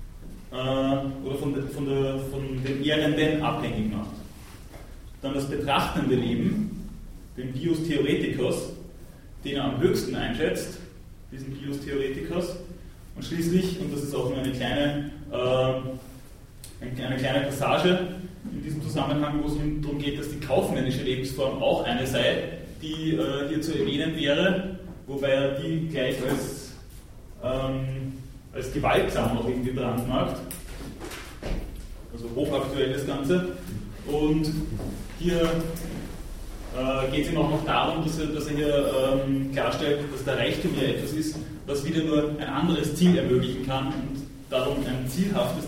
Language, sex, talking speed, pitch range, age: German, male, 135 wpm, 125-150 Hz, 30-49